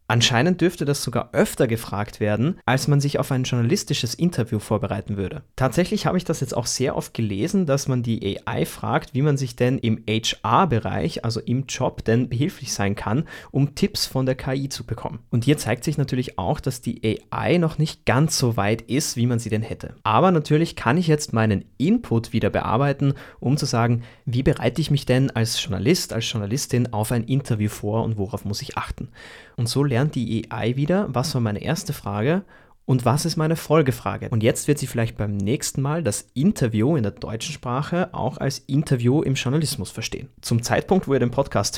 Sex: male